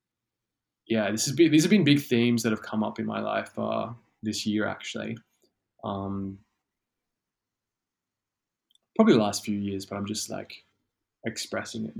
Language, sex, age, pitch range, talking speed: English, male, 20-39, 105-115 Hz, 160 wpm